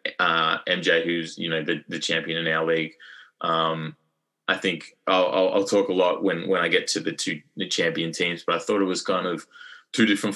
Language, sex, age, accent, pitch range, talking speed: English, male, 20-39, Australian, 80-100 Hz, 225 wpm